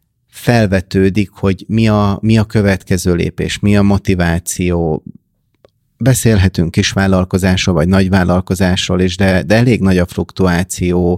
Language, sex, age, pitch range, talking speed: Hungarian, male, 30-49, 90-105 Hz, 125 wpm